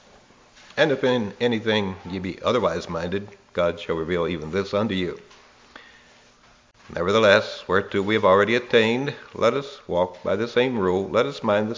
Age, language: 60-79, English